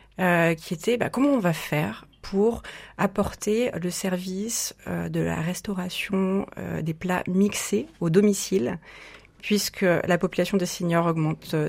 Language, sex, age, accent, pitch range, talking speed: French, female, 30-49, French, 165-205 Hz, 145 wpm